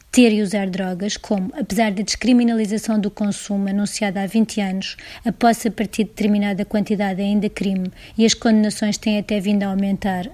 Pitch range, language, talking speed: 195-215 Hz, Portuguese, 175 wpm